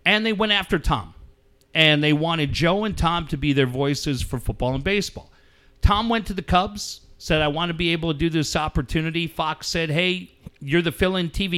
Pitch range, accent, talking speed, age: 125-175 Hz, American, 210 wpm, 40-59